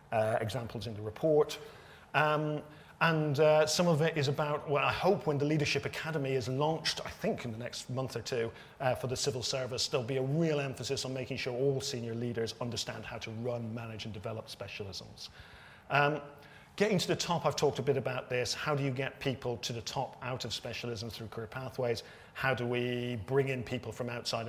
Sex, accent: male, British